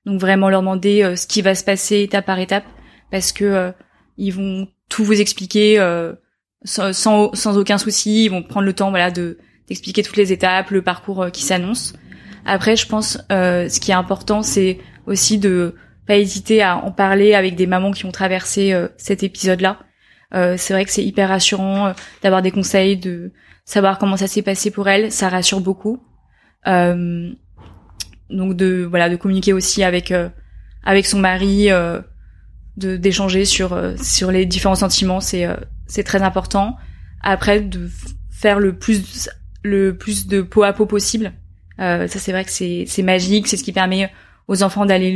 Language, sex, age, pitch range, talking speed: French, female, 20-39, 185-205 Hz, 190 wpm